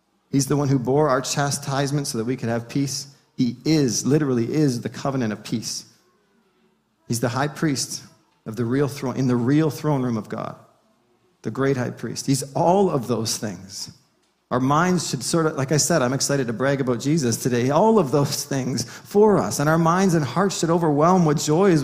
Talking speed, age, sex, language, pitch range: 210 wpm, 40-59, male, English, 130-165 Hz